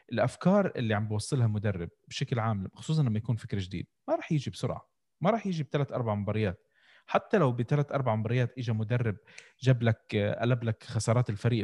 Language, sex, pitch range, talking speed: Arabic, male, 115-160 Hz, 180 wpm